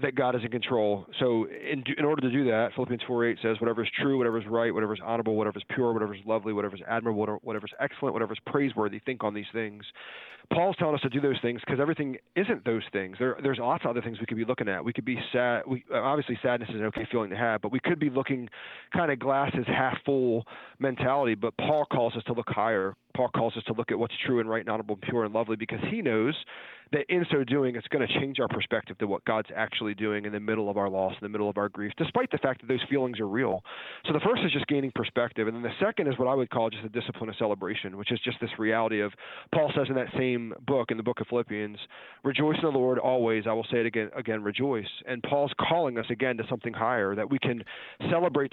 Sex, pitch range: male, 110-135 Hz